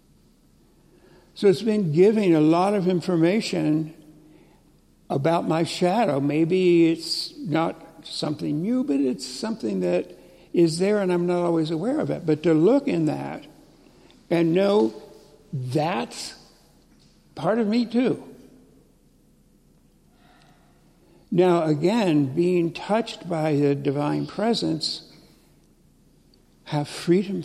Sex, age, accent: male, 60-79, American